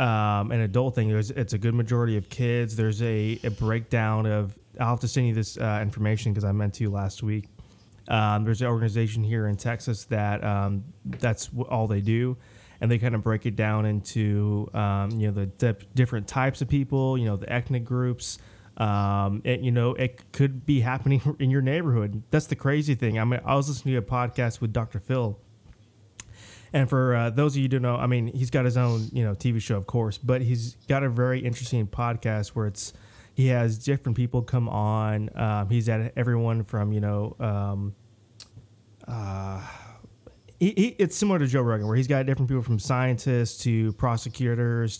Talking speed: 200 wpm